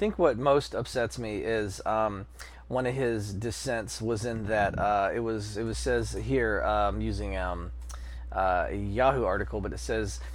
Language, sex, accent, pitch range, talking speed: English, male, American, 105-150 Hz, 190 wpm